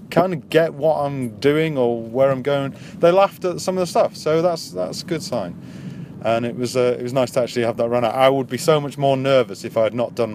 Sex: male